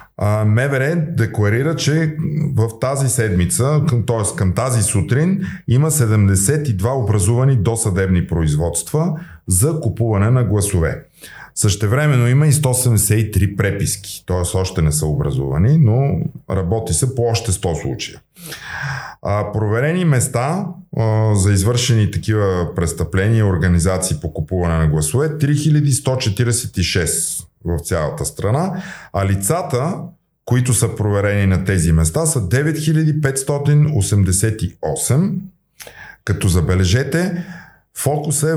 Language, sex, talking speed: Bulgarian, male, 105 wpm